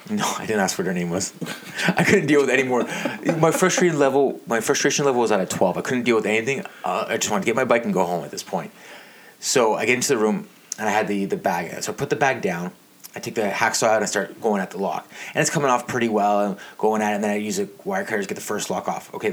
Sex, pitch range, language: male, 120-180 Hz, English